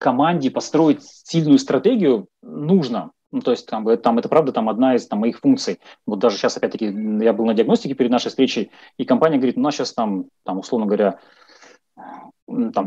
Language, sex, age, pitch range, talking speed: Russian, male, 30-49, 130-205 Hz, 190 wpm